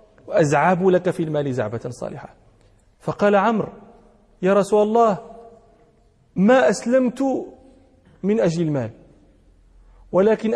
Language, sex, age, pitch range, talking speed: Arabic, male, 40-59, 150-215 Hz, 95 wpm